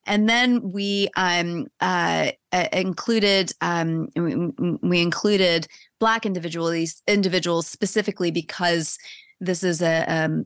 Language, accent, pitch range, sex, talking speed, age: English, American, 160-200 Hz, female, 110 wpm, 30-49